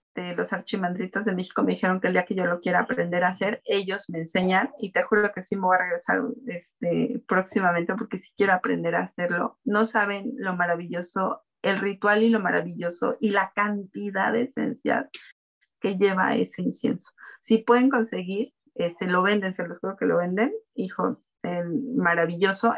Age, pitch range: 30-49, 180-230 Hz